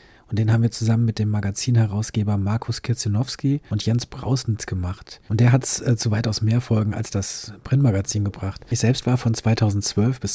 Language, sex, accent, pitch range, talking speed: German, male, German, 105-125 Hz, 195 wpm